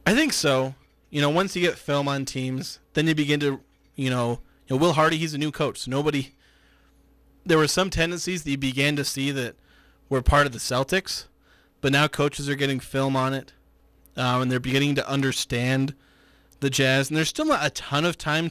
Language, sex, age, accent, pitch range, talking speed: English, male, 20-39, American, 125-150 Hz, 215 wpm